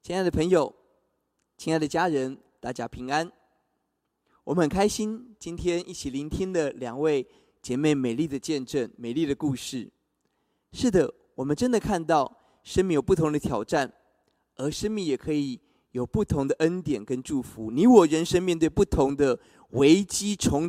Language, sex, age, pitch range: Chinese, male, 20-39, 140-195 Hz